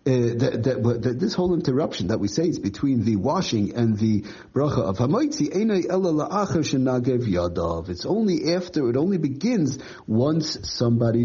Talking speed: 145 wpm